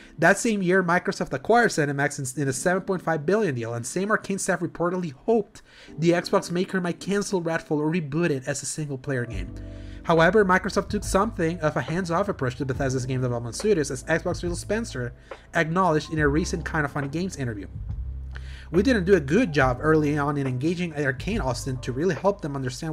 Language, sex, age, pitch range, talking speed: English, male, 30-49, 130-175 Hz, 190 wpm